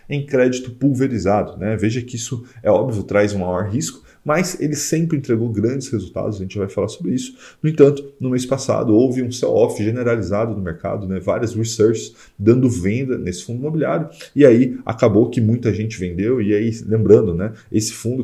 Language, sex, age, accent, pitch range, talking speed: Portuguese, male, 20-39, Brazilian, 105-130 Hz, 190 wpm